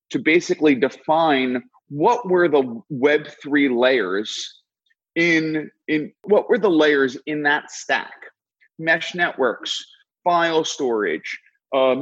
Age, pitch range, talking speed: 30-49, 135-205 Hz, 115 wpm